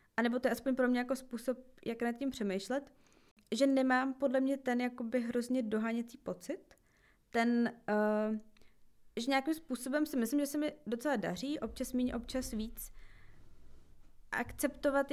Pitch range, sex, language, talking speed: 220-270 Hz, female, Czech, 150 wpm